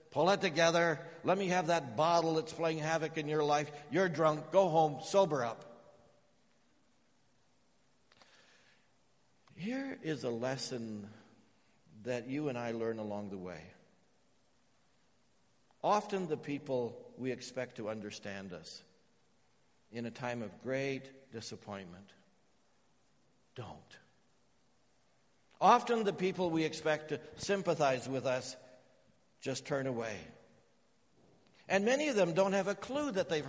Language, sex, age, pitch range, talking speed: English, male, 60-79, 125-180 Hz, 125 wpm